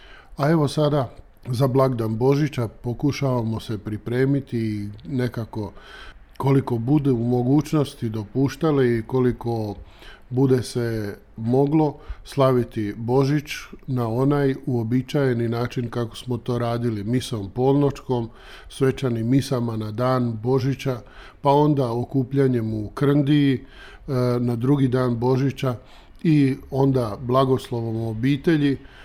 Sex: male